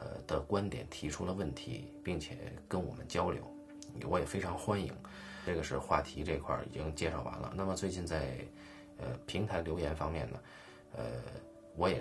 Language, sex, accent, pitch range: Chinese, male, native, 75-105 Hz